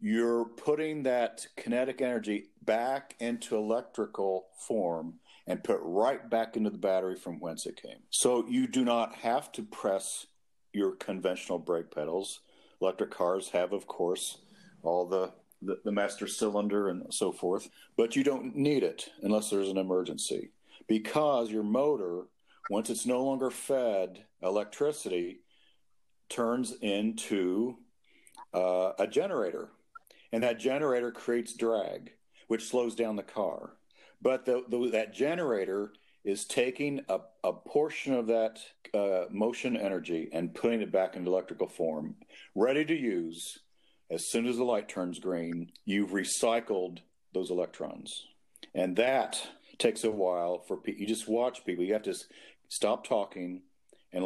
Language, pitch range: English, 95-125 Hz